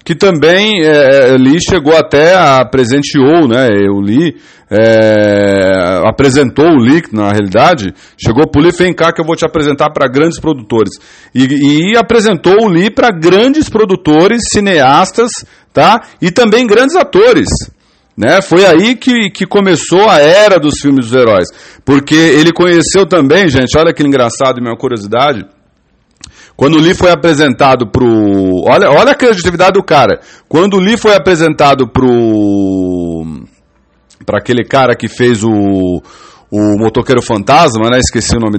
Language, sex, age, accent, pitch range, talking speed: English, male, 40-59, Brazilian, 125-195 Hz, 155 wpm